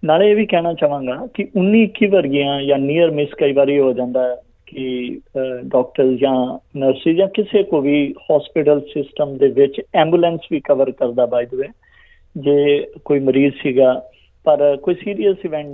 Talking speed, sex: 160 wpm, male